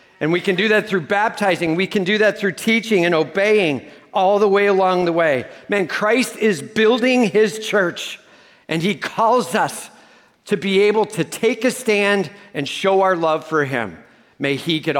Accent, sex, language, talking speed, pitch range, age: American, male, English, 190 wpm, 170-215 Hz, 50-69